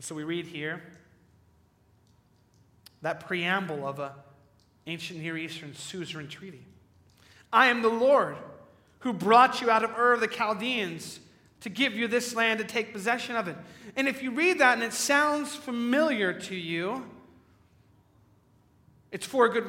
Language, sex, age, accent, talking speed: English, male, 30-49, American, 155 wpm